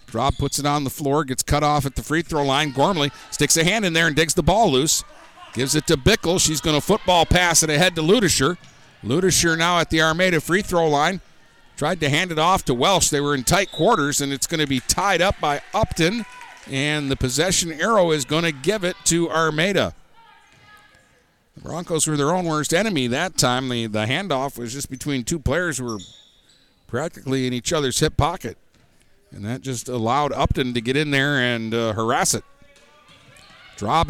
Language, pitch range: English, 135-180 Hz